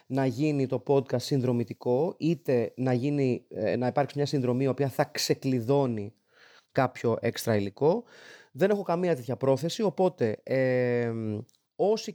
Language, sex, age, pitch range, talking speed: Greek, male, 30-49, 130-190 Hz, 125 wpm